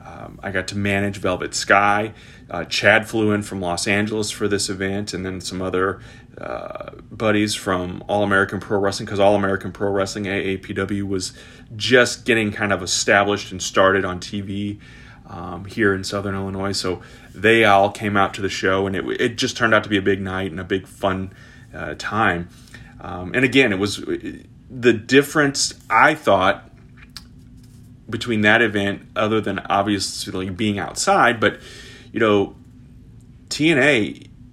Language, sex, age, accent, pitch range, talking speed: English, male, 30-49, American, 95-120 Hz, 165 wpm